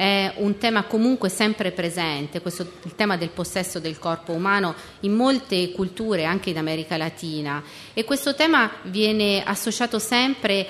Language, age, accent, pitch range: Italian, 30-49, native, 175-225 Hz